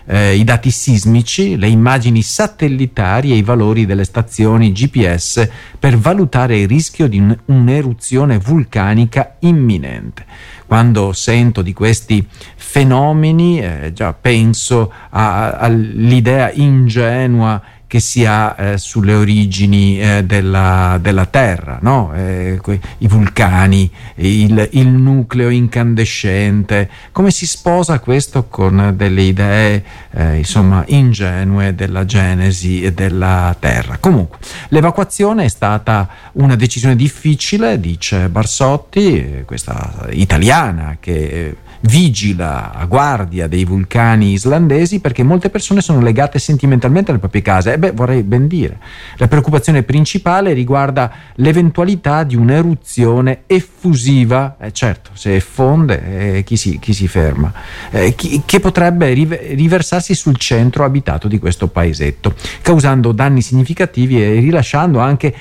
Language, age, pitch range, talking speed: Italian, 50-69, 100-140 Hz, 120 wpm